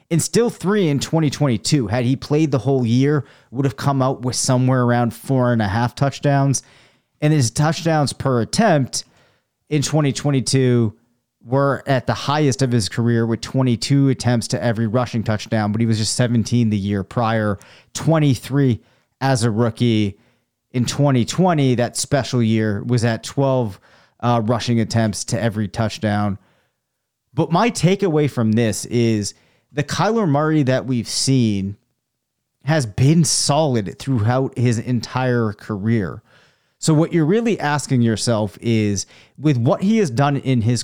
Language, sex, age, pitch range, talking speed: English, male, 30-49, 115-140 Hz, 150 wpm